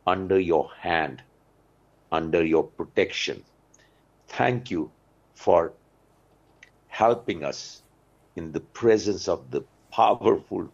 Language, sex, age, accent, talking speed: Hindi, male, 60-79, native, 95 wpm